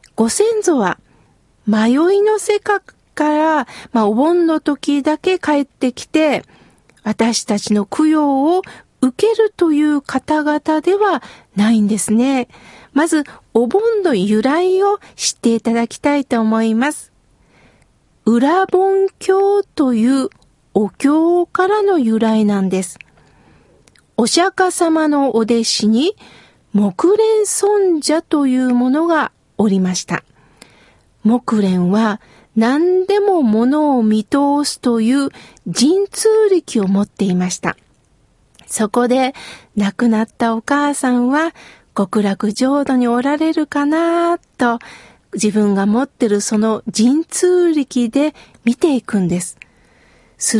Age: 50-69